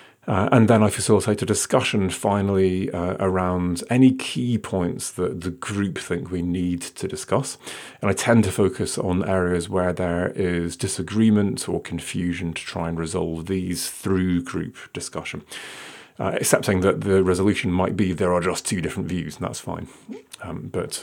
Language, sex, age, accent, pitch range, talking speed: English, male, 30-49, British, 90-105 Hz, 170 wpm